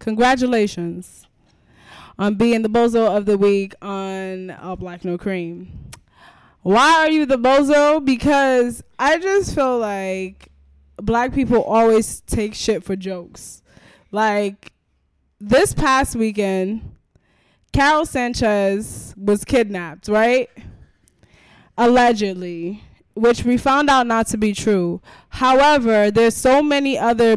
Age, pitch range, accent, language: 10-29, 195-240 Hz, American, English